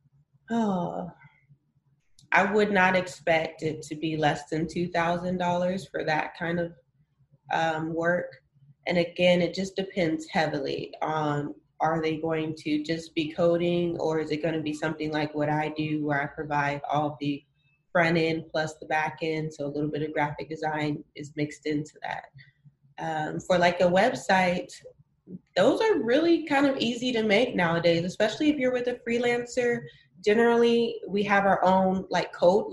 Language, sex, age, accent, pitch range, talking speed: English, female, 20-39, American, 150-180 Hz, 165 wpm